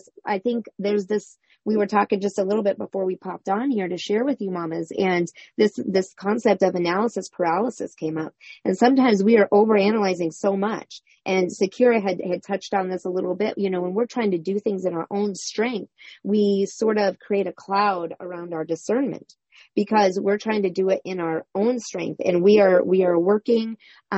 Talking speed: 205 wpm